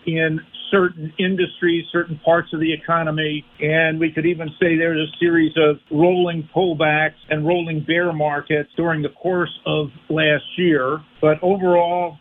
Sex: male